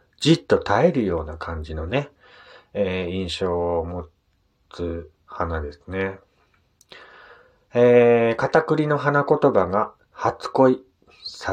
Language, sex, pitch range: Japanese, male, 90-130 Hz